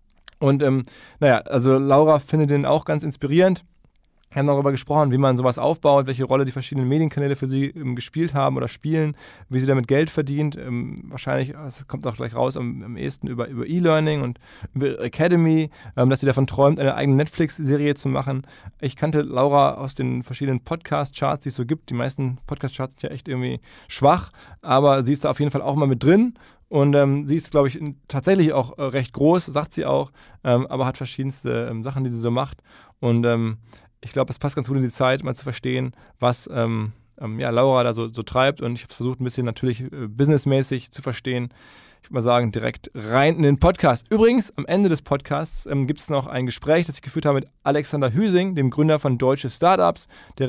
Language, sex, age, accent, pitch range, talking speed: German, male, 20-39, German, 130-150 Hz, 205 wpm